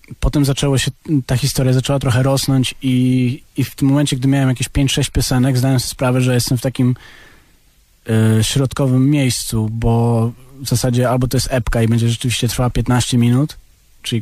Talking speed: 175 wpm